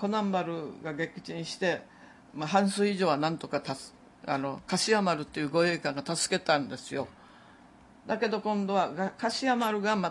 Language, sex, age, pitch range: Japanese, female, 60-79, 150-200 Hz